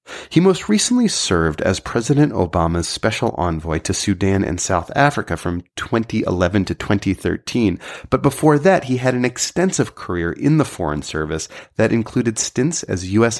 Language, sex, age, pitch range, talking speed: English, male, 30-49, 90-125 Hz, 155 wpm